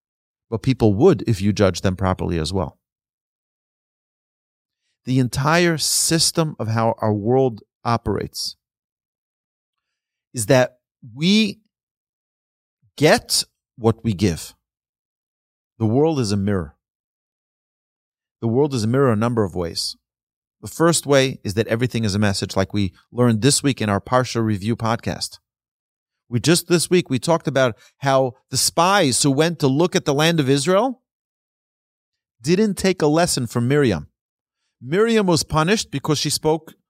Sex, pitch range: male, 110-165 Hz